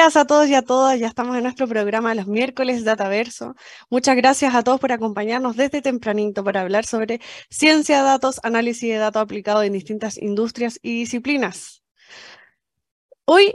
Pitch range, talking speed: 220-270 Hz, 165 wpm